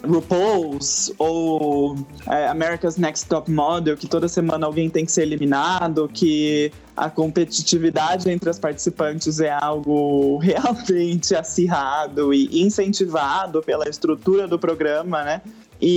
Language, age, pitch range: Portuguese, 20-39, 165-210 Hz